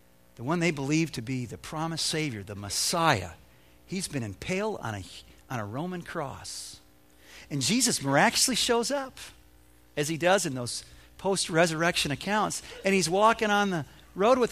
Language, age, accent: English, 50-69, American